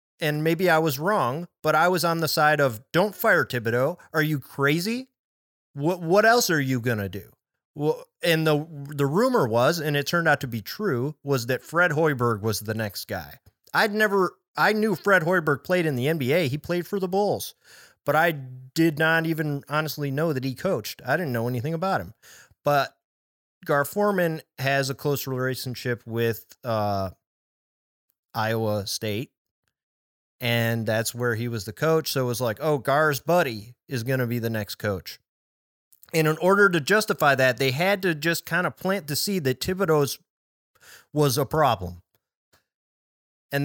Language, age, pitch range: English, 30-49, 125-175 Hz